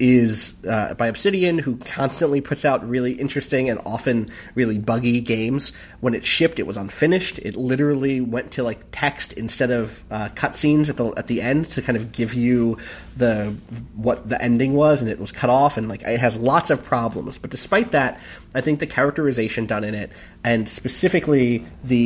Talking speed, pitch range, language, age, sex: 195 wpm, 115-140 Hz, English, 30-49, male